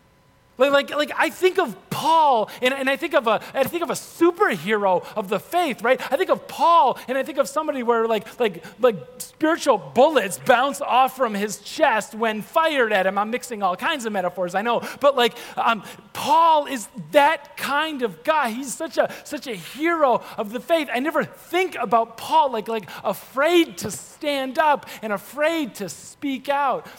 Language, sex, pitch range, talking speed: English, male, 210-285 Hz, 195 wpm